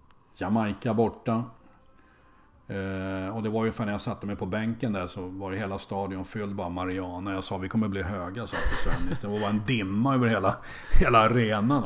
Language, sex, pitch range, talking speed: Swedish, male, 100-125 Hz, 190 wpm